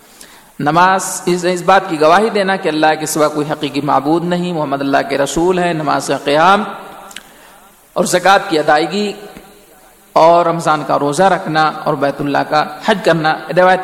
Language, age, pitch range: Urdu, 50-69, 155-195 Hz